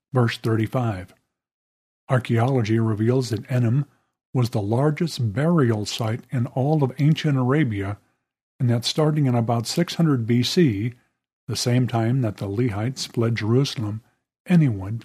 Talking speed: 130 wpm